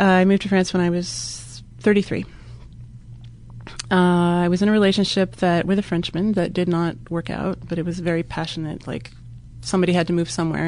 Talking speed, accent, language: 185 wpm, American, English